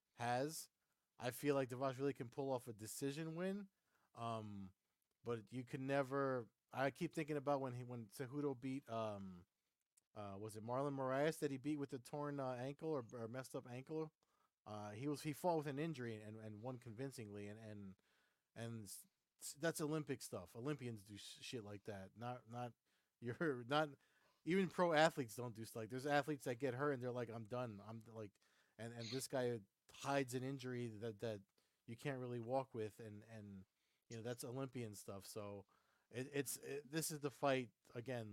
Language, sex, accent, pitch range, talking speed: English, male, American, 110-140 Hz, 190 wpm